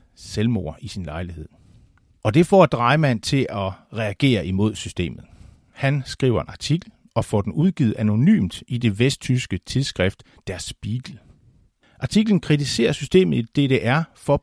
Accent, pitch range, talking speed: native, 110-155 Hz, 140 wpm